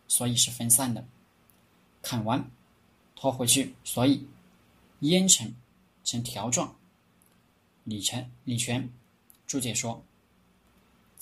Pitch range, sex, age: 110-140 Hz, male, 20-39